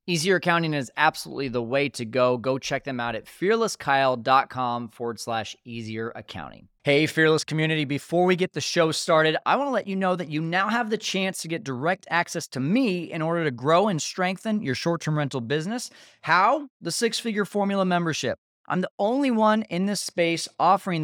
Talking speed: 195 wpm